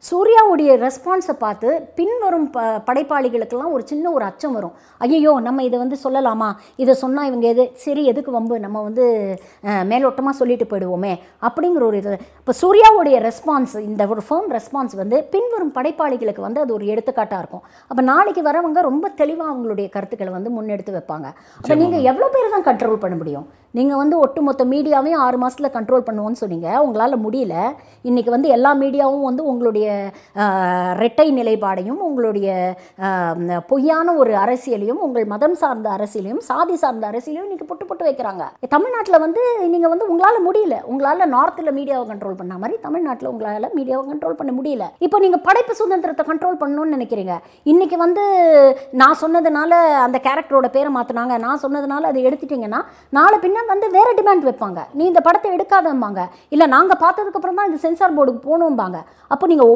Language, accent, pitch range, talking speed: Tamil, native, 230-330 Hz, 90 wpm